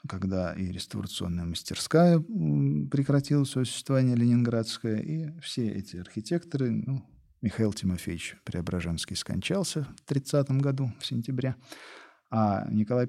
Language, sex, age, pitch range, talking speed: Russian, male, 40-59, 105-150 Hz, 105 wpm